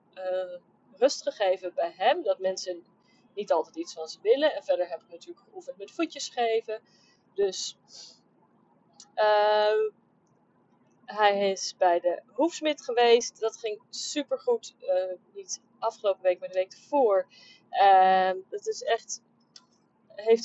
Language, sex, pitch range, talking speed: Dutch, female, 185-235 Hz, 140 wpm